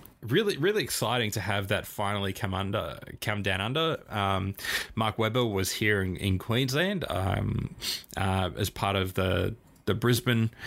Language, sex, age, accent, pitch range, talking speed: English, male, 20-39, Australian, 95-115 Hz, 155 wpm